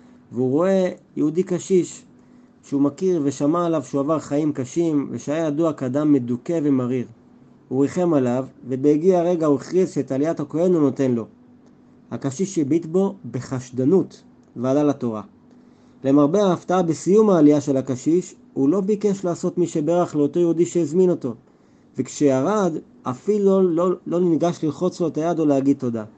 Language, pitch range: Hebrew, 140-180 Hz